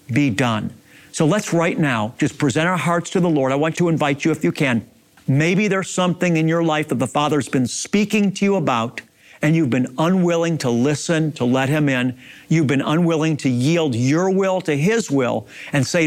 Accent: American